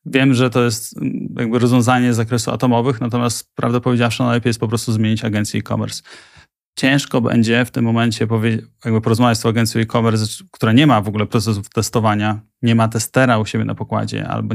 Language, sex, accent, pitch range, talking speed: Polish, male, native, 110-120 Hz, 185 wpm